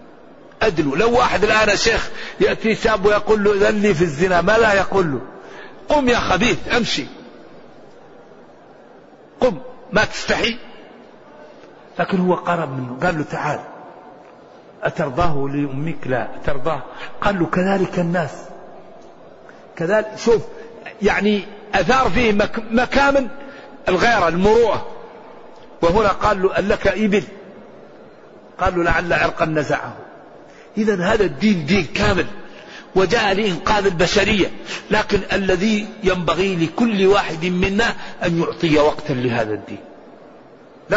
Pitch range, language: 175-225 Hz, Arabic